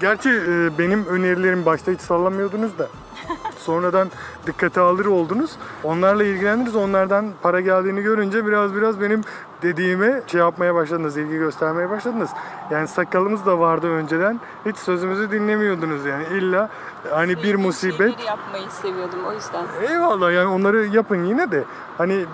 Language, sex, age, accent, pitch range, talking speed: Turkish, male, 30-49, native, 175-215 Hz, 140 wpm